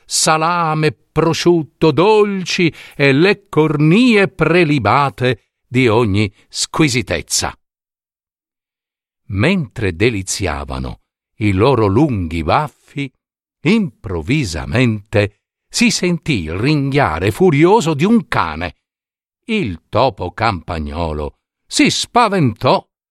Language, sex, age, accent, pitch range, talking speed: Italian, male, 50-69, native, 115-165 Hz, 80 wpm